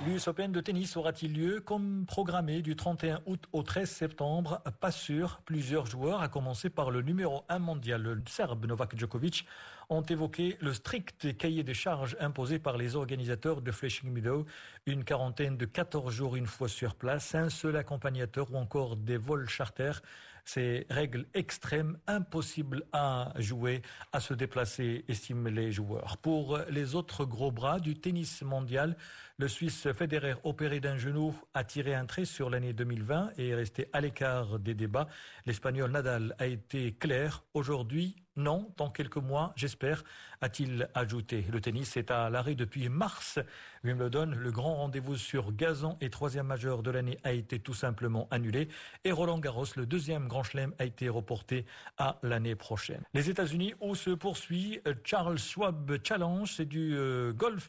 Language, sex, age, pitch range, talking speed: Arabic, male, 50-69, 125-160 Hz, 165 wpm